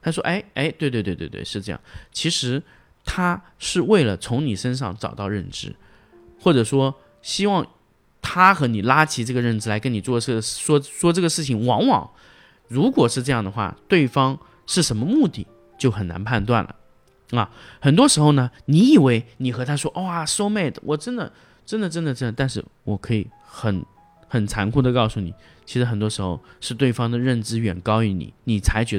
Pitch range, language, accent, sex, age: 105-145 Hz, Chinese, native, male, 20-39